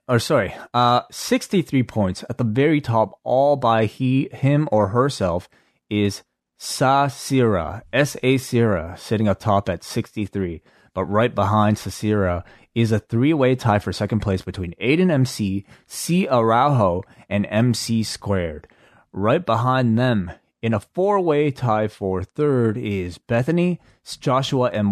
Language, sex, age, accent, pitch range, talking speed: English, male, 30-49, American, 100-125 Hz, 135 wpm